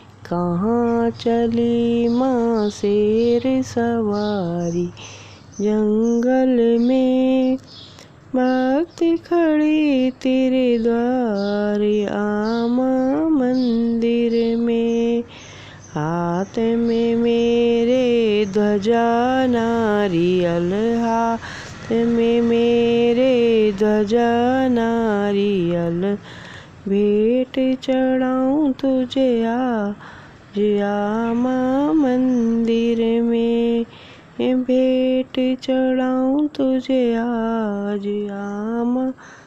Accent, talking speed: native, 55 wpm